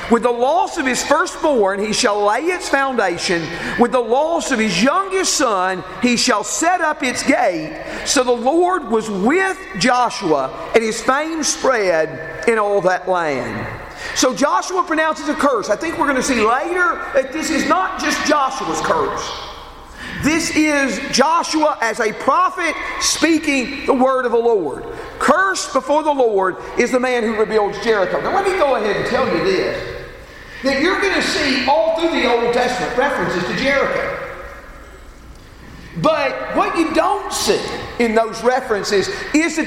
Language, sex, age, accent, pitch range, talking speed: English, male, 50-69, American, 240-325 Hz, 165 wpm